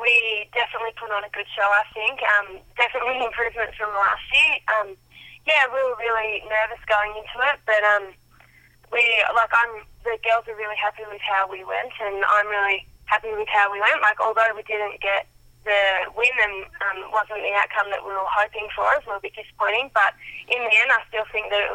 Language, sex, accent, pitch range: English, female, Australian, 200-230 Hz